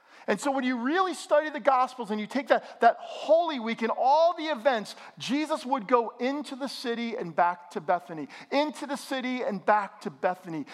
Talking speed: 200 wpm